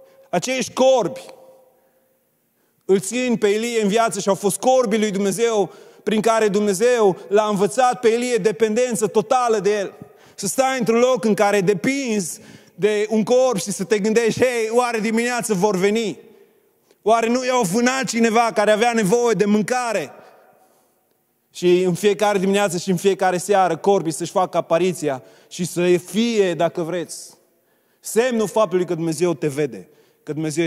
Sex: male